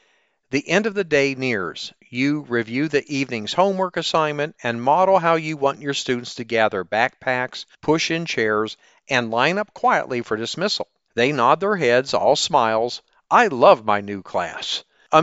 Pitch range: 125-185 Hz